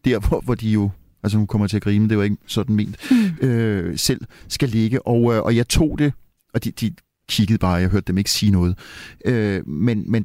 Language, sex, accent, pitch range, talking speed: Danish, male, native, 100-115 Hz, 230 wpm